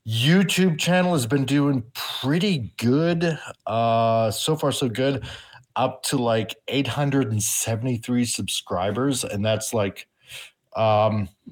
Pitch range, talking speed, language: 115-145 Hz, 110 wpm, English